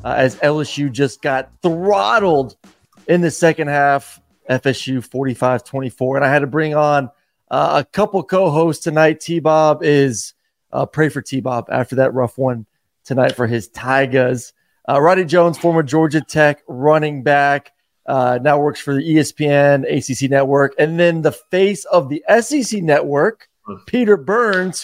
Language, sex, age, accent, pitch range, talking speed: English, male, 30-49, American, 135-165 Hz, 145 wpm